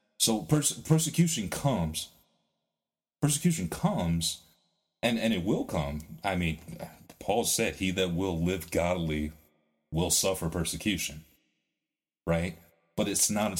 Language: English